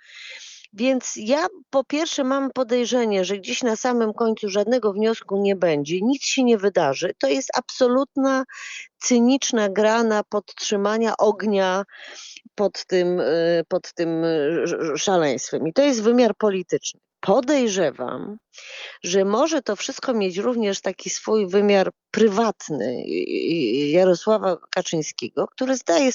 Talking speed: 115 wpm